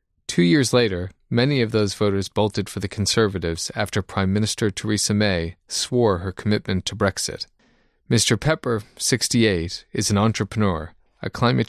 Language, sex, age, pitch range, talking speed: English, male, 40-59, 95-120 Hz, 150 wpm